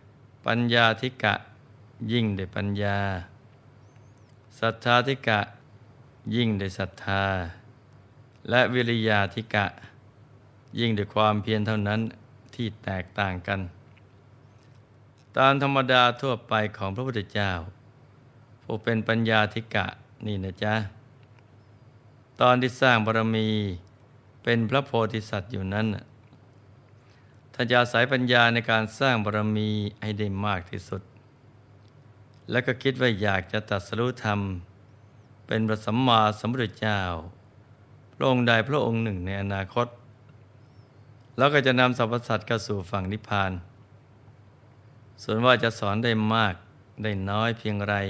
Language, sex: Thai, male